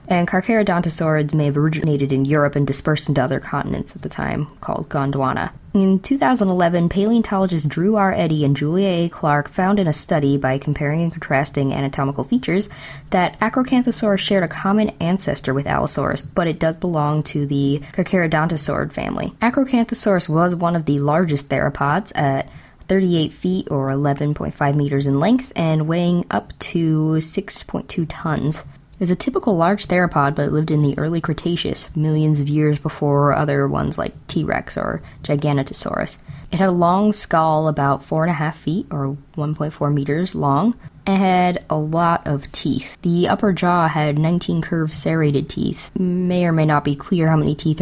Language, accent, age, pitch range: English, American, 20-39, 145-180 Hz